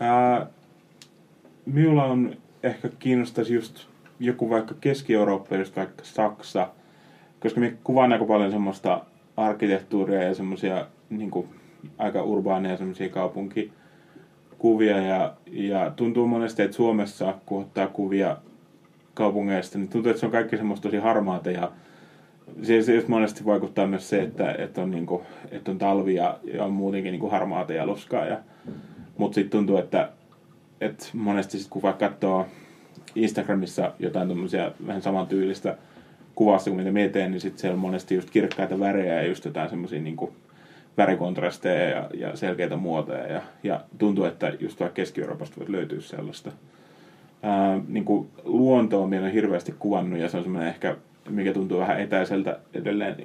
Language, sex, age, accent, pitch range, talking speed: Finnish, male, 20-39, native, 95-110 Hz, 145 wpm